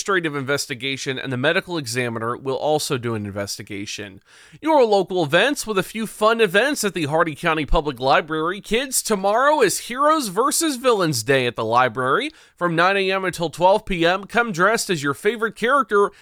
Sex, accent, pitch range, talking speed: male, American, 145-225 Hz, 175 wpm